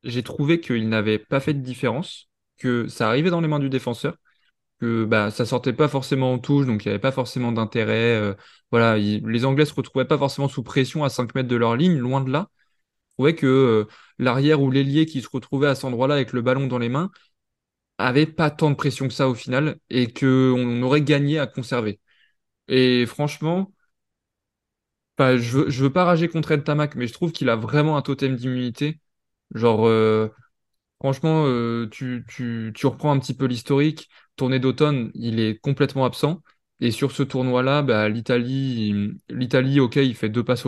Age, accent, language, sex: 20-39, French, French, male